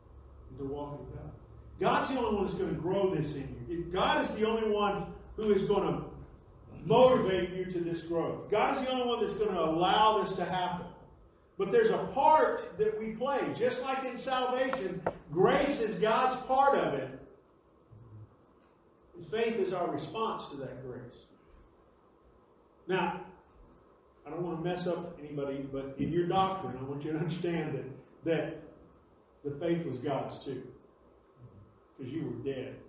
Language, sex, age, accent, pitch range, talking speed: English, male, 50-69, American, 155-235 Hz, 170 wpm